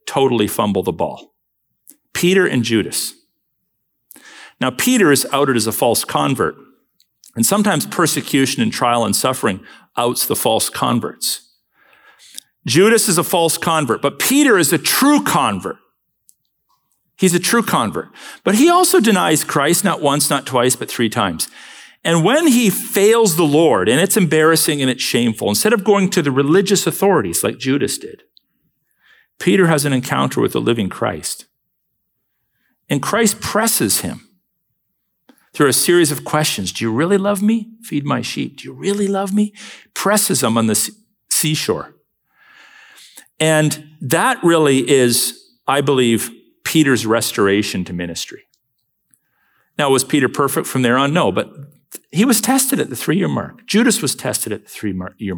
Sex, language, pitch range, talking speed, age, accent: male, English, 130-210 Hz, 155 wpm, 50-69, American